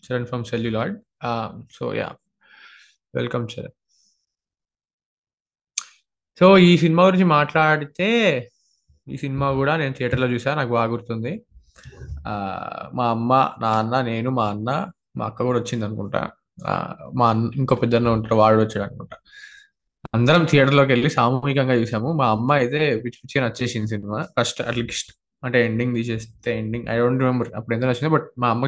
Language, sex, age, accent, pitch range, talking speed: Telugu, male, 20-39, native, 115-155 Hz, 135 wpm